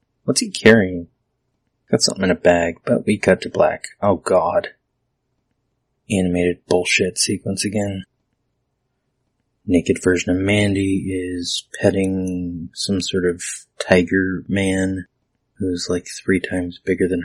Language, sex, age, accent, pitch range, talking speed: English, male, 30-49, American, 90-115 Hz, 125 wpm